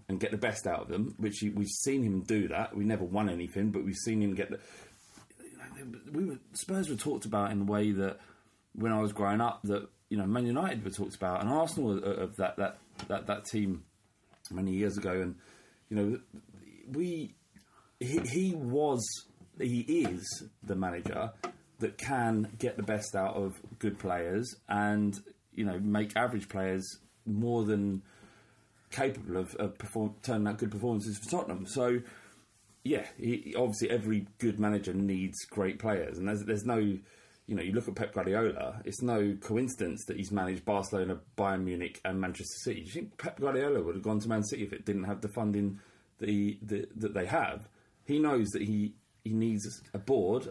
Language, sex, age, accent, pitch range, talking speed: English, male, 30-49, British, 100-115 Hz, 190 wpm